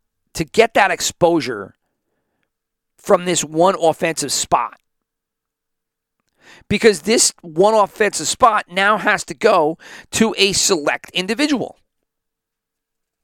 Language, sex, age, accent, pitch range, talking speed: English, male, 40-59, American, 130-190 Hz, 100 wpm